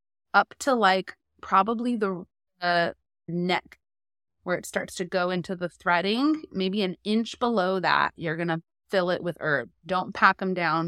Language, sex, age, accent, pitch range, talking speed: English, female, 20-39, American, 165-195 Hz, 165 wpm